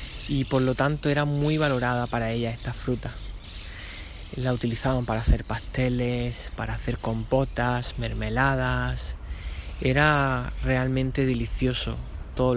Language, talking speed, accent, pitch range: Spanish, 115 wpm, Spanish, 105-135 Hz